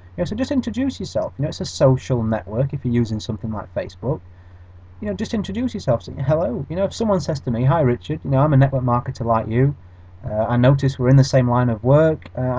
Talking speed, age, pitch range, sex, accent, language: 255 wpm, 30-49, 110-150 Hz, male, British, English